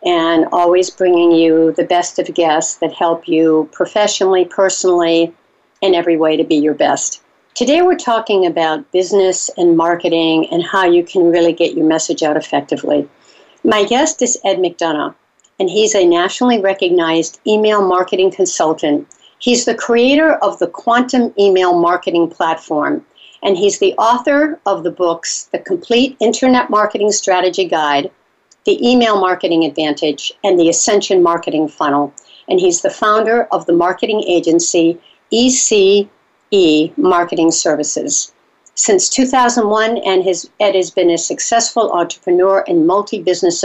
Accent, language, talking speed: American, English, 140 wpm